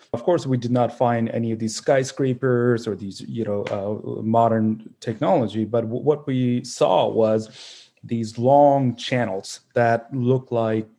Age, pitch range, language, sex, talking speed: 30-49, 110-125 Hz, English, male, 155 wpm